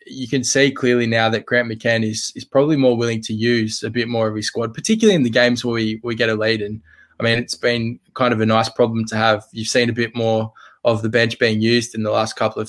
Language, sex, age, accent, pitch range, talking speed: English, male, 20-39, Australian, 110-125 Hz, 275 wpm